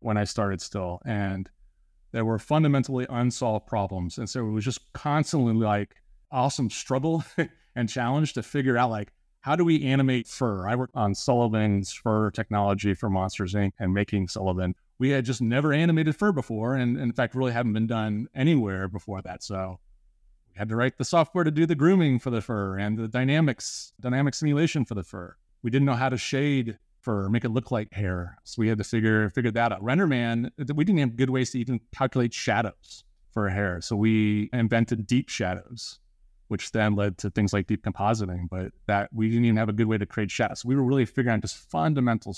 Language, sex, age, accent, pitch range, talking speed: English, male, 30-49, American, 100-130 Hz, 205 wpm